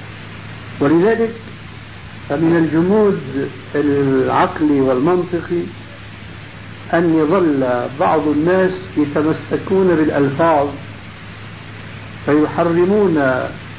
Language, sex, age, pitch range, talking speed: Arabic, male, 60-79, 110-170 Hz, 50 wpm